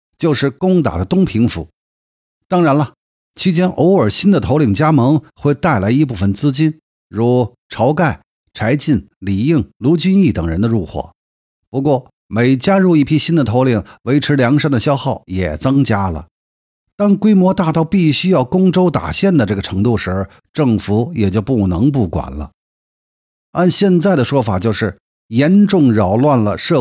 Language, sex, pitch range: Chinese, male, 100-160 Hz